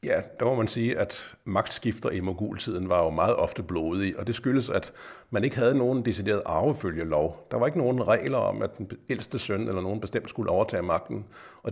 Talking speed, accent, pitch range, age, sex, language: 210 wpm, native, 95-115 Hz, 60-79, male, Danish